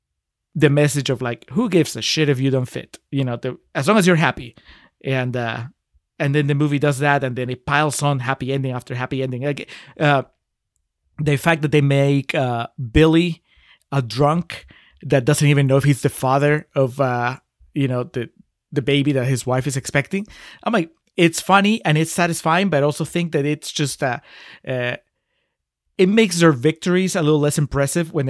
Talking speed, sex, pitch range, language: 195 wpm, male, 130-160 Hz, English